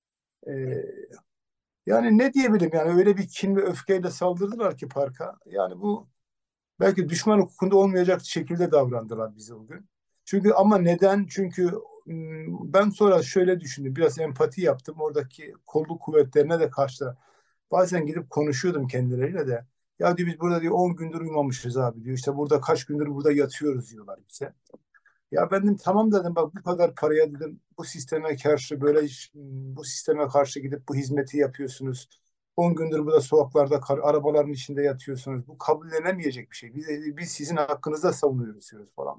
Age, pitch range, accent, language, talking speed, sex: 60-79, 145-185 Hz, native, Turkish, 155 wpm, male